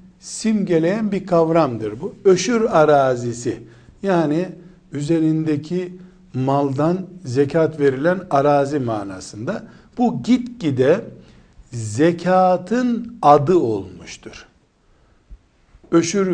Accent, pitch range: native, 140-185 Hz